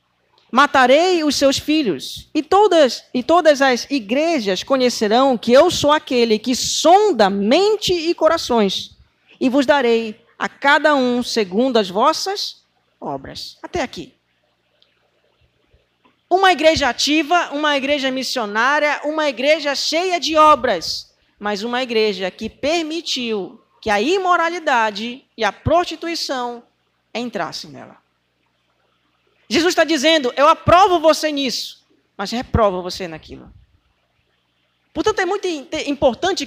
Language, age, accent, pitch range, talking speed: Portuguese, 20-39, Brazilian, 220-320 Hz, 115 wpm